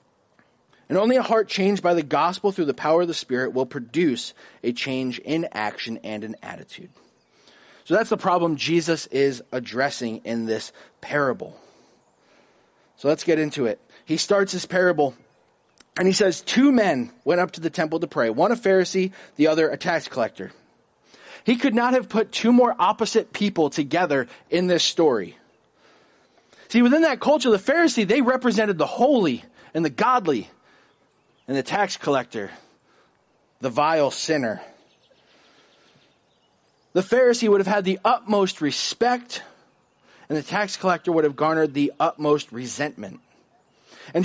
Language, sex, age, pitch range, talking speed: English, male, 30-49, 150-230 Hz, 155 wpm